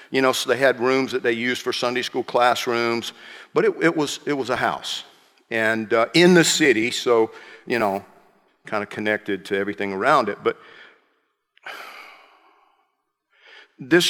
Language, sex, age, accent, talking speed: English, male, 50-69, American, 160 wpm